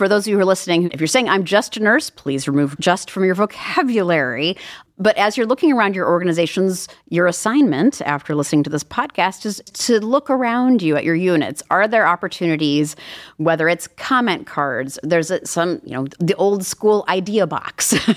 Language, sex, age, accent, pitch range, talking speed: English, female, 30-49, American, 145-205 Hz, 190 wpm